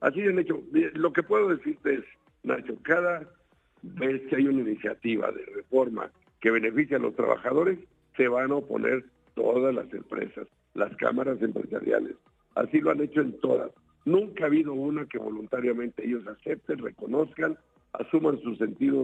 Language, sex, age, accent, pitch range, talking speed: Spanish, male, 60-79, Mexican, 130-185 Hz, 160 wpm